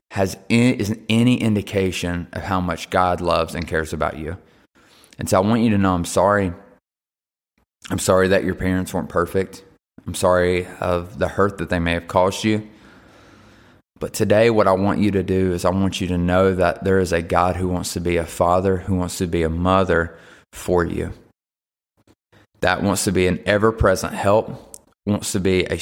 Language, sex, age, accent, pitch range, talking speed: English, male, 20-39, American, 90-100 Hz, 195 wpm